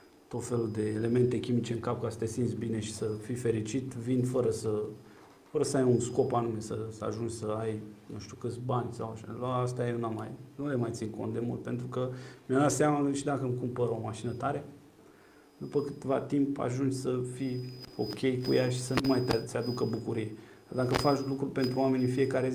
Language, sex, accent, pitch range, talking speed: Romanian, male, native, 115-130 Hz, 210 wpm